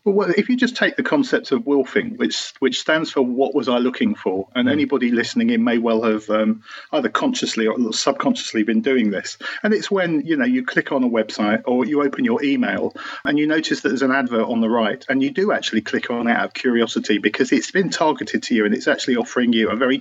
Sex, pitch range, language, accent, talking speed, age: male, 120-185 Hz, English, British, 245 wpm, 40-59